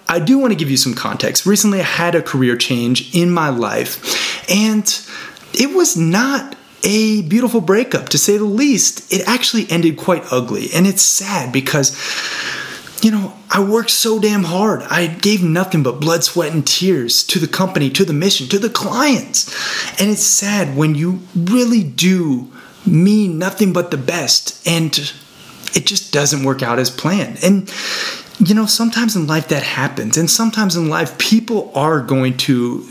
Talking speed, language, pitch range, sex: 175 wpm, English, 150-215 Hz, male